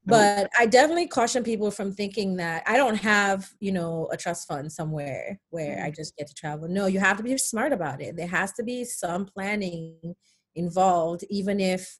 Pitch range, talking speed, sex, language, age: 170-210 Hz, 200 wpm, female, English, 30-49